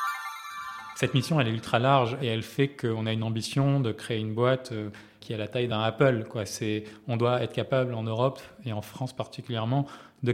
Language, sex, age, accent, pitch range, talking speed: French, male, 20-39, French, 115-140 Hz, 210 wpm